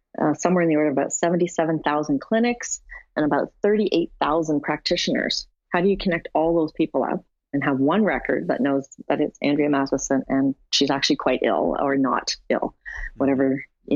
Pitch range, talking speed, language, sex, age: 150-225 Hz, 175 wpm, English, female, 30-49